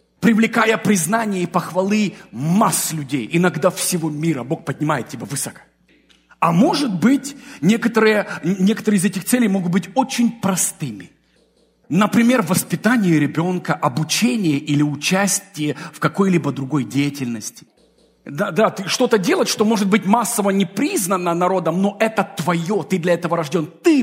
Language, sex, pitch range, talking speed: English, male, 165-235 Hz, 135 wpm